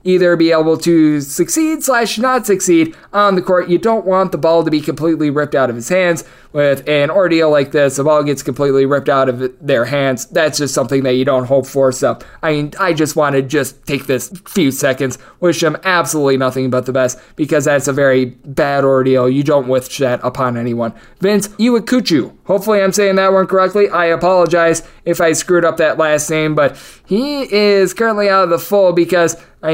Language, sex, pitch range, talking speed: English, male, 140-180 Hz, 210 wpm